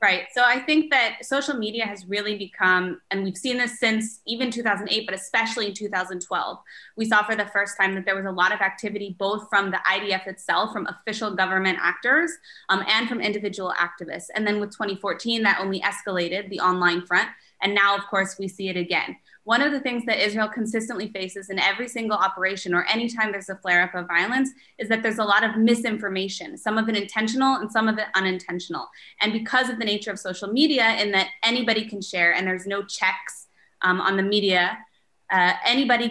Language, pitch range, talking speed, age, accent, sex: English, 190-230 Hz, 210 wpm, 20-39, American, female